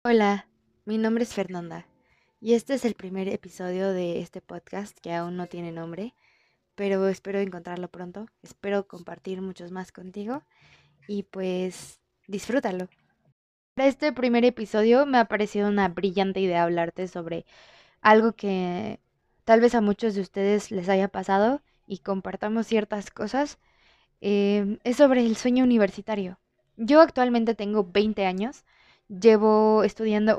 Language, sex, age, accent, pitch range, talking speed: Spanish, female, 20-39, Mexican, 190-230 Hz, 140 wpm